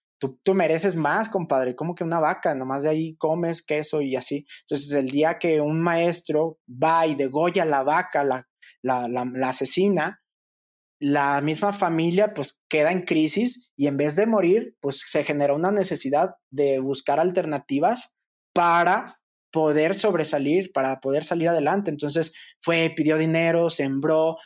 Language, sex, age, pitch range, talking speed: Spanish, male, 20-39, 140-170 Hz, 155 wpm